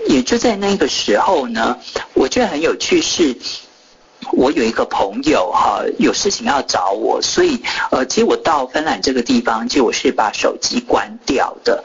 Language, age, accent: Chinese, 50-69, native